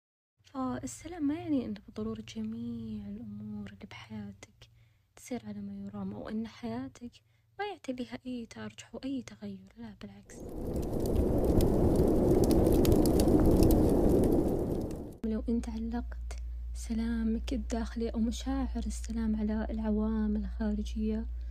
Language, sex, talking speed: Arabic, female, 105 wpm